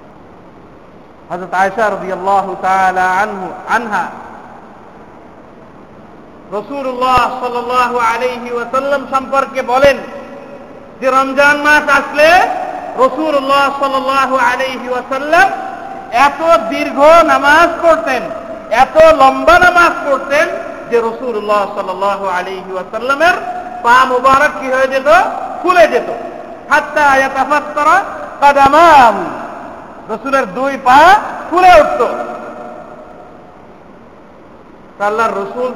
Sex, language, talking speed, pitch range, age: male, Bengali, 50 wpm, 245-320 Hz, 50-69